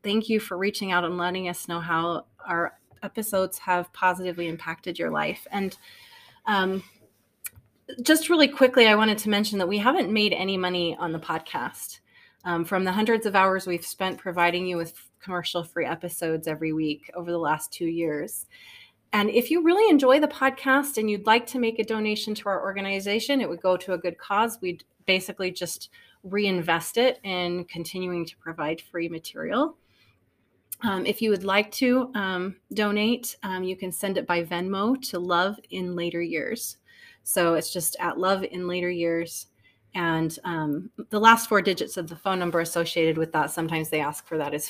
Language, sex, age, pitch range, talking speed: English, female, 30-49, 170-220 Hz, 185 wpm